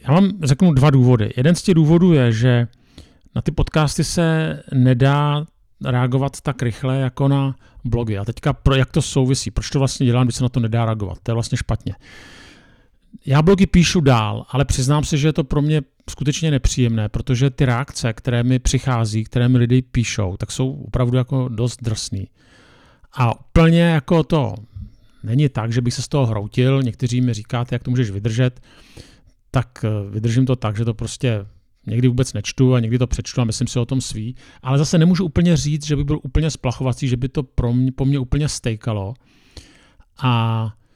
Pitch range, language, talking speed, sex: 115-140 Hz, Czech, 190 wpm, male